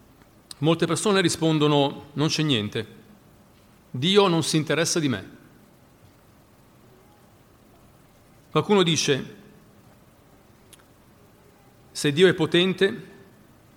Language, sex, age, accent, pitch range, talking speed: Italian, male, 40-59, native, 115-155 Hz, 80 wpm